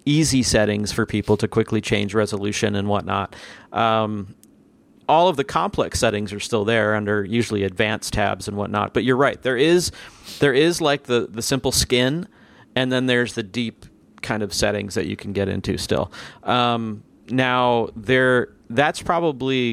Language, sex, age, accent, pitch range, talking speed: English, male, 40-59, American, 105-130 Hz, 170 wpm